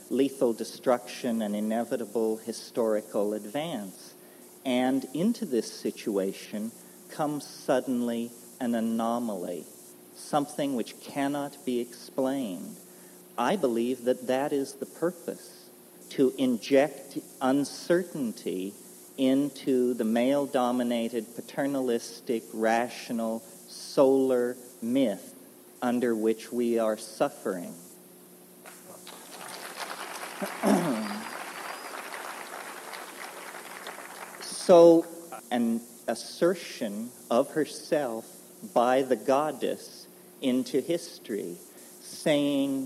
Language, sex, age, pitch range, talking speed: English, male, 40-59, 115-145 Hz, 75 wpm